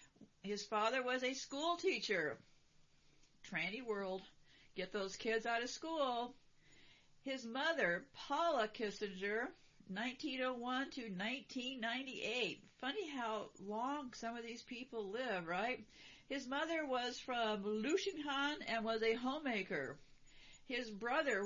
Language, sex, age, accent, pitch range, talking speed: English, female, 50-69, American, 205-255 Hz, 115 wpm